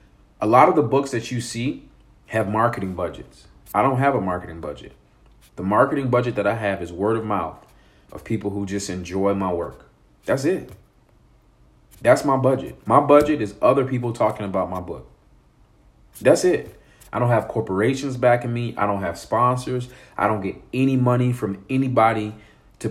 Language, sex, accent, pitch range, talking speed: English, male, American, 95-125 Hz, 180 wpm